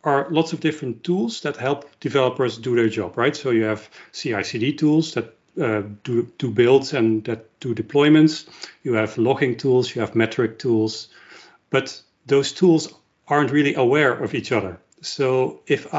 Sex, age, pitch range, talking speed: male, 40-59, 120-150 Hz, 175 wpm